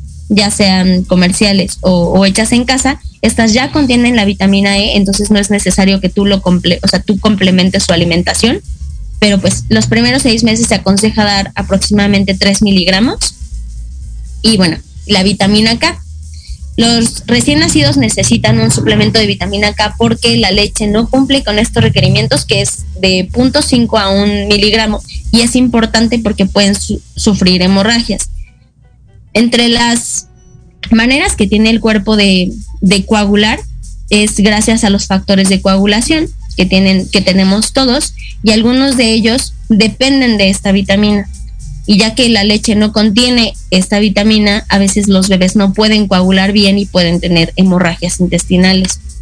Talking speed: 155 wpm